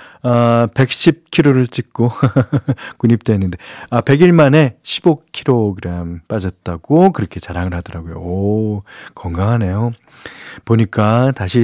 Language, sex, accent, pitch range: Korean, male, native, 100-140 Hz